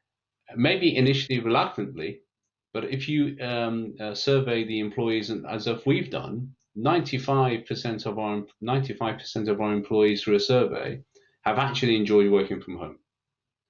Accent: British